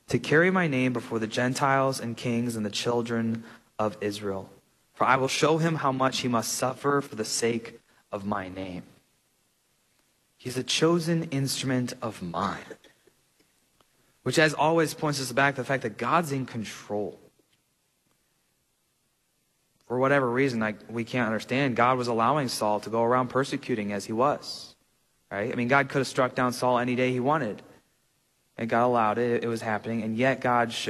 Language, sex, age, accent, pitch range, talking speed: English, male, 20-39, American, 115-150 Hz, 180 wpm